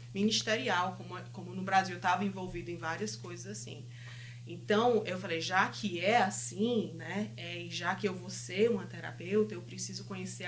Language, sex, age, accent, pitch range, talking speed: English, female, 20-39, Brazilian, 115-175 Hz, 180 wpm